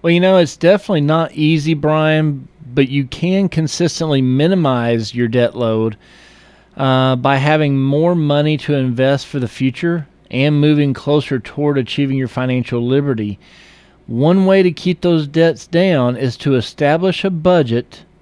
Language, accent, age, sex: English, American, 40-59, male